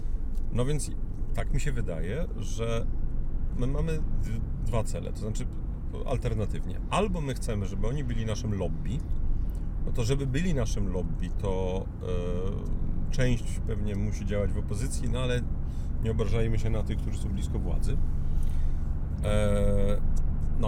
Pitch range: 95-115 Hz